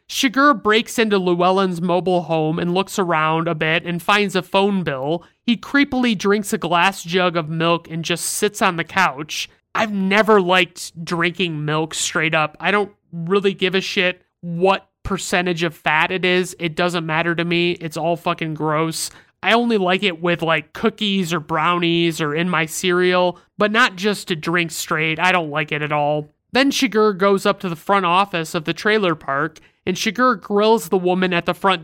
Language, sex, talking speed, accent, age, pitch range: English, male, 195 wpm, American, 30-49, 170-195 Hz